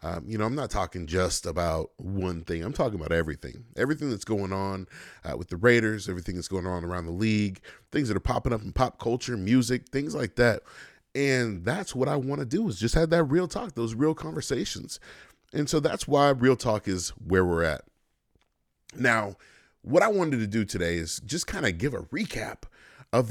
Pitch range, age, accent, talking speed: 85-125 Hz, 30-49, American, 210 wpm